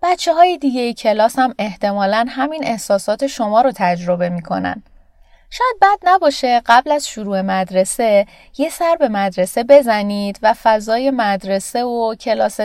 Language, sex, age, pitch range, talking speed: Persian, female, 30-49, 195-265 Hz, 145 wpm